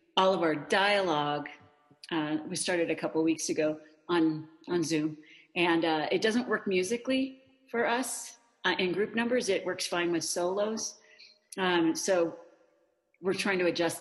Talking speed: 155 wpm